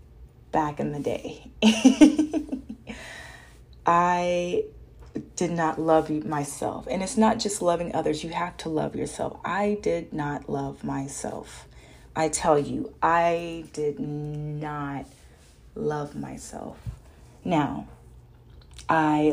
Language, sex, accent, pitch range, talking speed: English, female, American, 140-165 Hz, 110 wpm